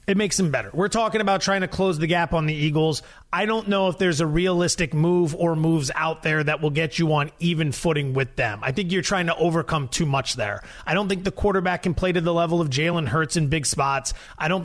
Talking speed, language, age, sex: 260 wpm, English, 30-49, male